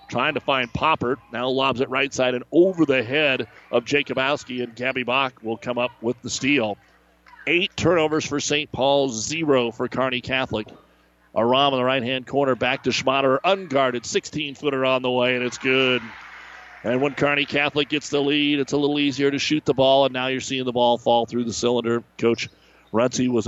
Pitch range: 120-145 Hz